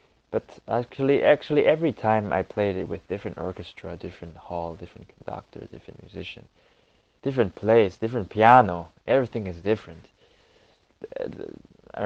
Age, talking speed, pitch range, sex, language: 20-39, 125 wpm, 90-110 Hz, male, English